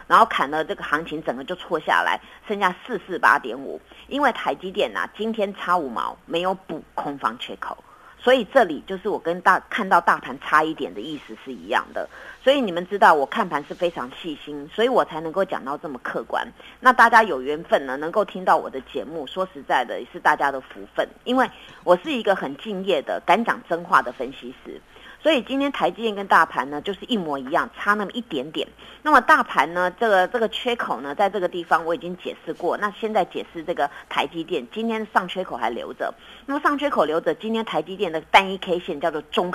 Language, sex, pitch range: Chinese, female, 165-235 Hz